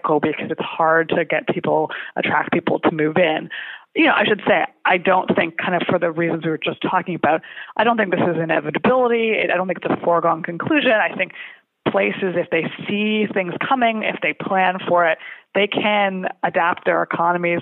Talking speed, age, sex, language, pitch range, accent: 205 wpm, 20-39, female, English, 160-195 Hz, American